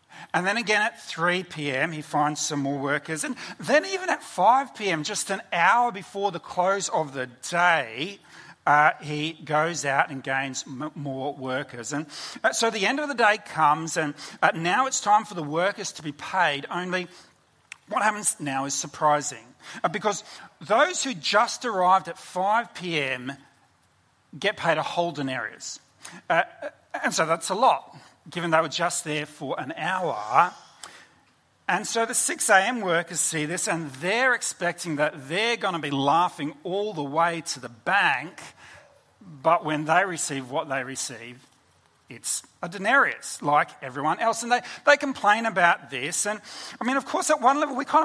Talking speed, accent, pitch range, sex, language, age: 170 wpm, Australian, 145-200 Hz, male, English, 40-59